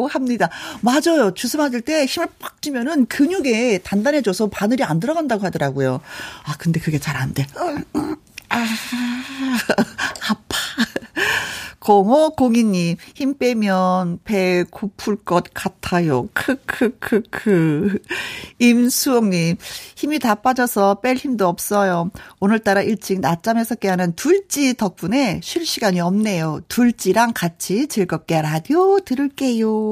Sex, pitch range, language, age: female, 190-275 Hz, Korean, 40-59